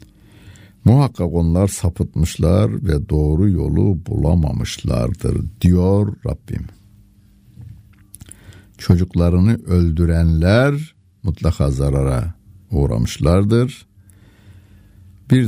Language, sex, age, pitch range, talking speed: Turkish, male, 60-79, 80-105 Hz, 60 wpm